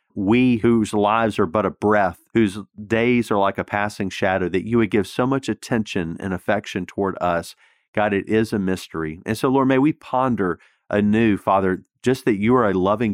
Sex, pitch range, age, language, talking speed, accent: male, 95-115 Hz, 40-59, English, 200 wpm, American